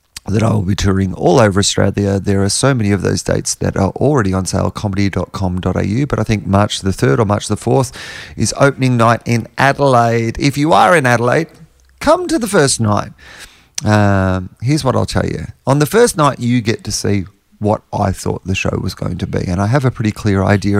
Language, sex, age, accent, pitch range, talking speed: English, male, 40-59, Australian, 95-120 Hz, 220 wpm